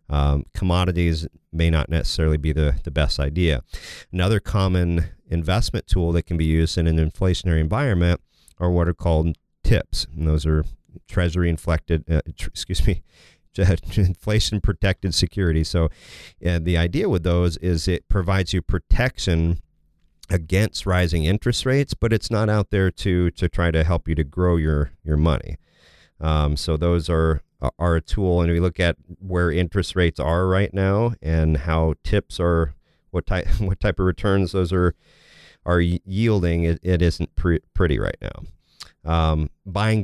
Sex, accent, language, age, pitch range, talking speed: male, American, English, 40-59, 80-95 Hz, 165 wpm